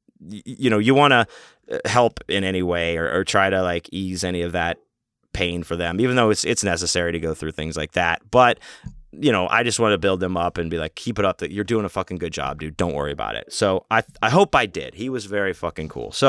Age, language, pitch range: 30-49, English, 90-120 Hz